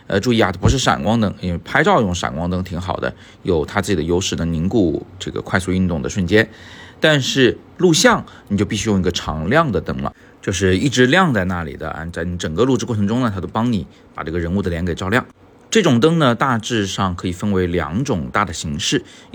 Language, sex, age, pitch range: Chinese, male, 30-49, 90-115 Hz